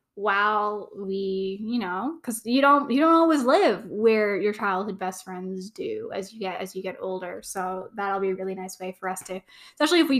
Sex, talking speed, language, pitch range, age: female, 220 wpm, English, 195-245 Hz, 10-29